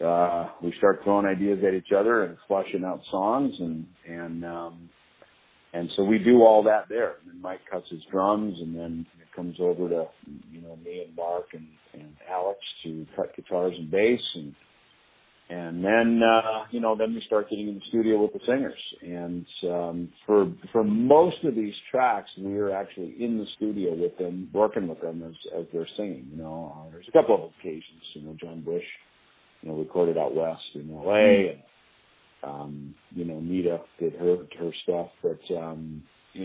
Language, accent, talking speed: English, American, 190 wpm